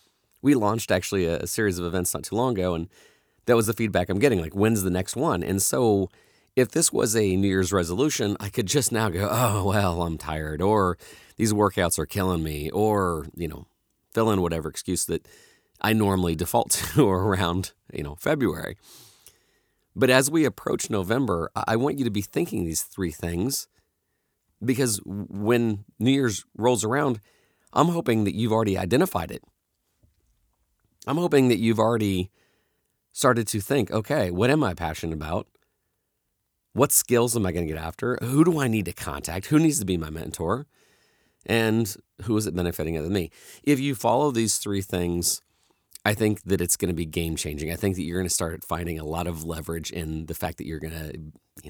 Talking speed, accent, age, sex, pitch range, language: 195 wpm, American, 40-59, male, 85-115 Hz, English